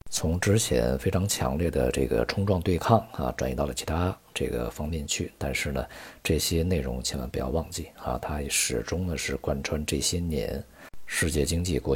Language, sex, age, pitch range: Chinese, male, 50-69, 70-95 Hz